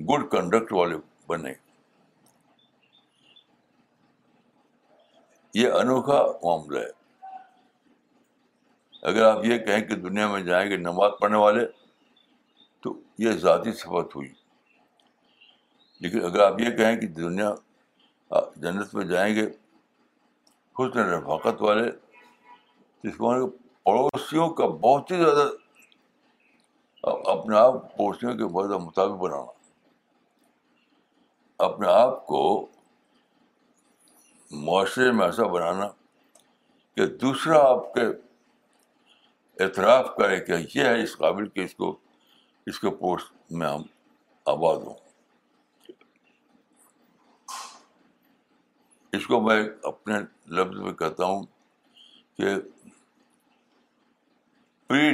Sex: male